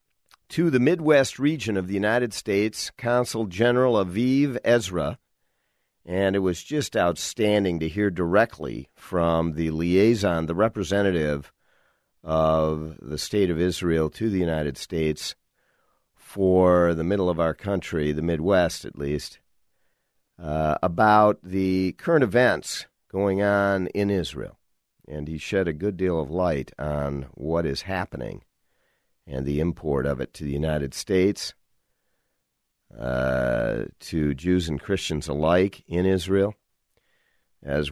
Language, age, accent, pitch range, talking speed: English, 50-69, American, 80-120 Hz, 130 wpm